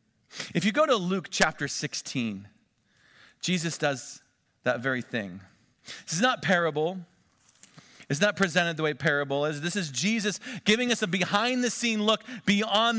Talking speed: 155 wpm